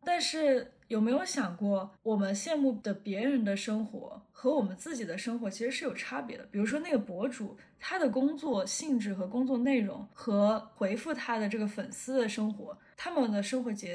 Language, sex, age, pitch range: Chinese, female, 10-29, 200-250 Hz